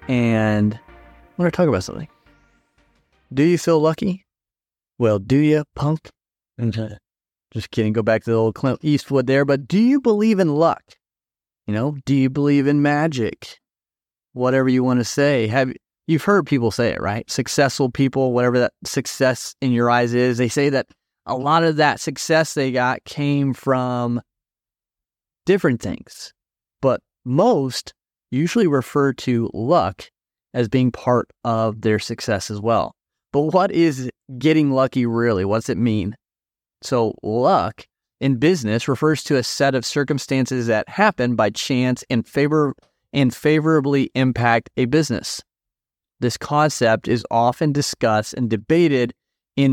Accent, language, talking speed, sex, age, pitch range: American, English, 155 wpm, male, 30-49, 110-145 Hz